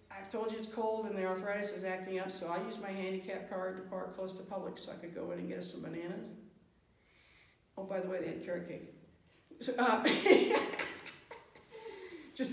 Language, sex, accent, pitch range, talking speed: English, female, American, 185-280 Hz, 205 wpm